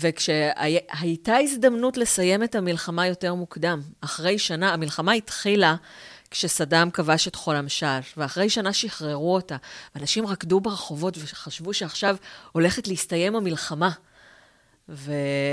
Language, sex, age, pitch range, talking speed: Hebrew, female, 30-49, 155-195 Hz, 110 wpm